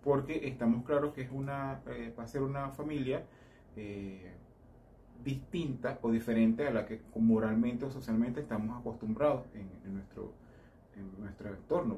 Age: 30-49